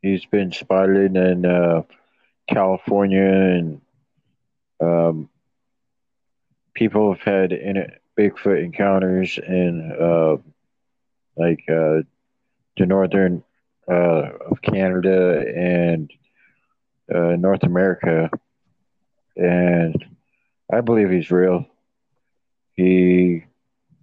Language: English